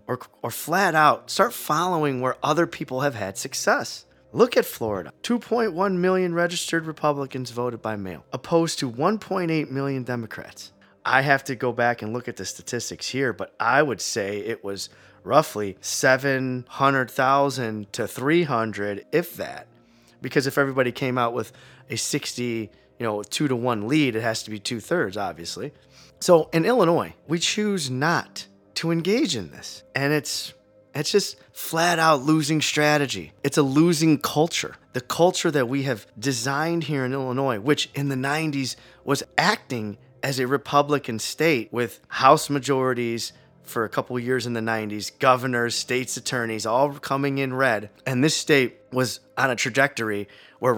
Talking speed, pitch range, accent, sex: 170 wpm, 120-150 Hz, American, male